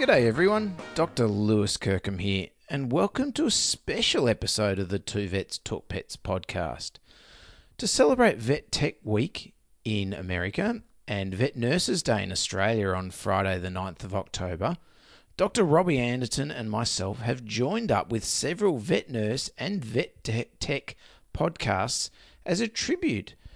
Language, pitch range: English, 100-140 Hz